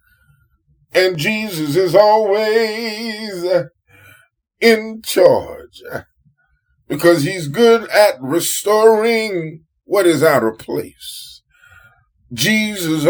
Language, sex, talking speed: English, male, 80 wpm